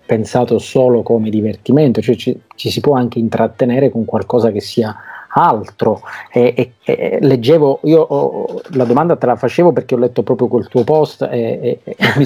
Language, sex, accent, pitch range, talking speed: Italian, male, native, 115-130 Hz, 185 wpm